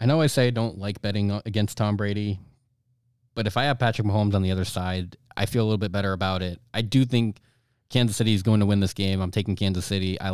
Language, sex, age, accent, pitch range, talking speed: English, male, 20-39, American, 100-120 Hz, 260 wpm